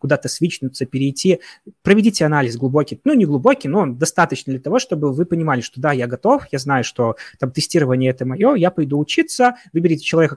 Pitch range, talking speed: 130-165 Hz, 190 wpm